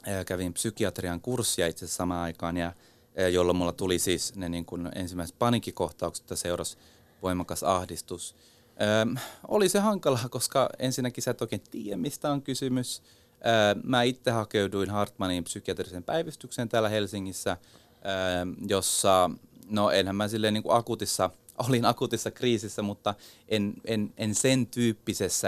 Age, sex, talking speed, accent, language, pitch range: 30-49, male, 140 wpm, native, Finnish, 90-115 Hz